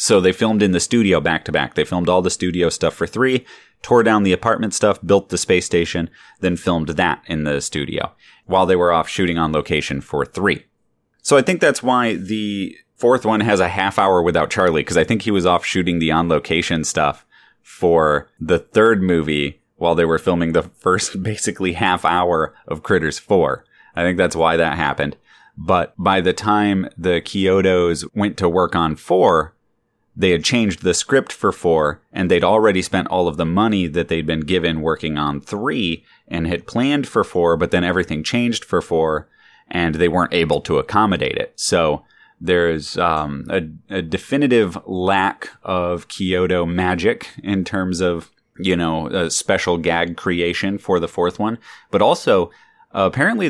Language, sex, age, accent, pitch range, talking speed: English, male, 30-49, American, 80-95 Hz, 185 wpm